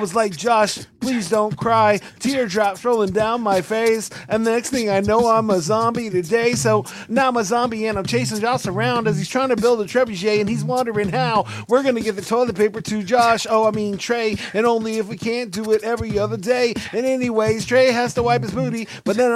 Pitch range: 210-240 Hz